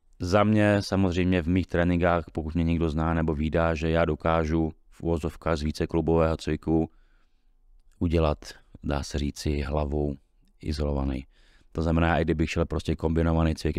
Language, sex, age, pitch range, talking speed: Czech, male, 30-49, 75-85 Hz, 150 wpm